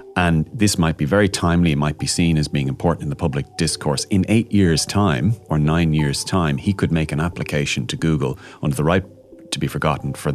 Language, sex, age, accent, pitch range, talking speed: English, male, 30-49, Irish, 75-95 Hz, 225 wpm